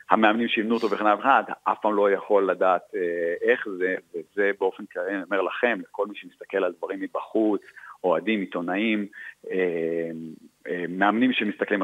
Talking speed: 155 wpm